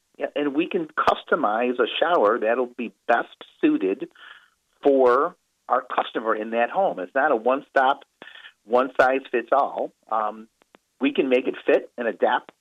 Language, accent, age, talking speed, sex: English, American, 50-69, 135 wpm, male